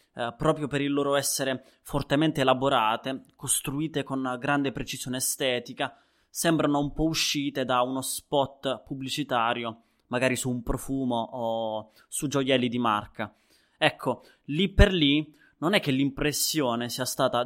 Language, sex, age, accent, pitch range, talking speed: Italian, male, 20-39, native, 120-145 Hz, 140 wpm